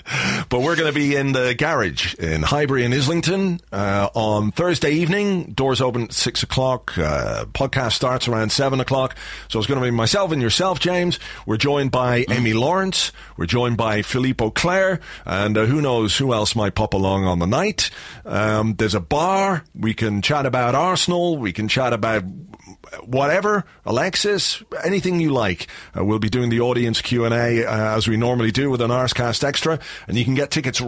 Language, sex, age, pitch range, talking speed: English, male, 40-59, 110-145 Hz, 185 wpm